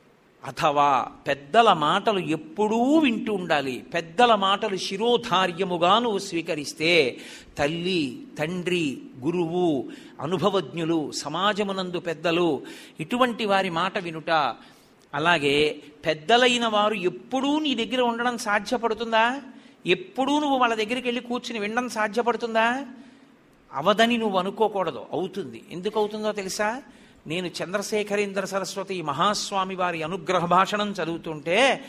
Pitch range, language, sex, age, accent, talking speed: 175-230 Hz, Telugu, male, 50-69, native, 100 wpm